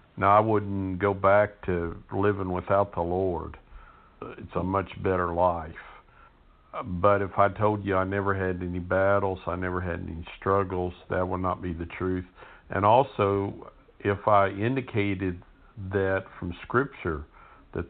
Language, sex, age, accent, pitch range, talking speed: English, male, 50-69, American, 95-105 Hz, 150 wpm